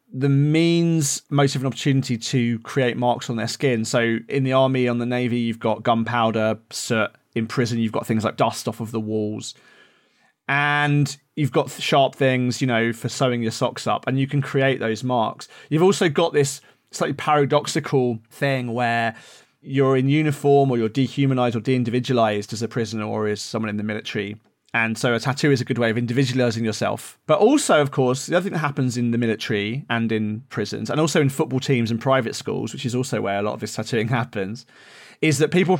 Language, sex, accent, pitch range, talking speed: English, male, British, 115-145 Hz, 210 wpm